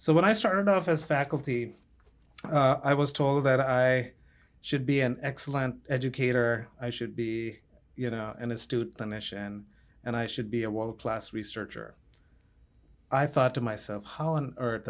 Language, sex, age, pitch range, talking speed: English, male, 30-49, 110-140 Hz, 160 wpm